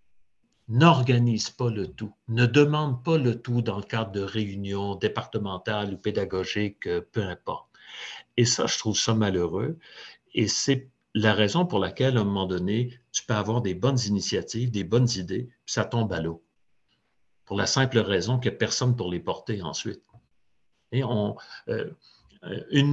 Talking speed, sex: 170 wpm, male